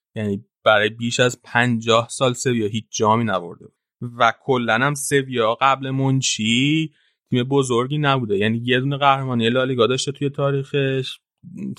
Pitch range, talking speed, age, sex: 110-130 Hz, 145 wpm, 30-49, male